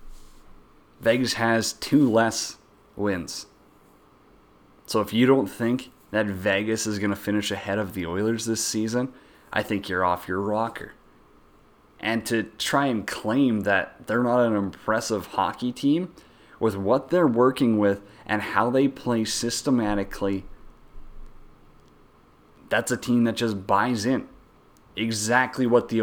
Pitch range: 95-115 Hz